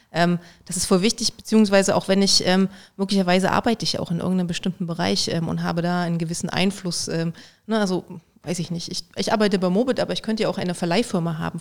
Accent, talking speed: German, 225 wpm